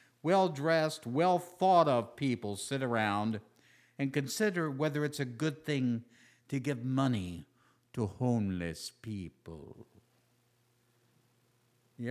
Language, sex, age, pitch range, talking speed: English, male, 60-79, 115-155 Hz, 95 wpm